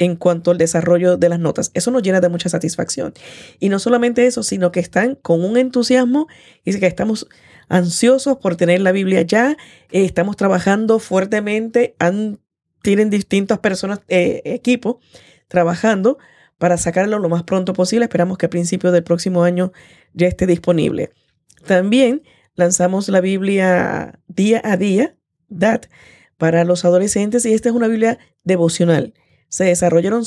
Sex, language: female, Spanish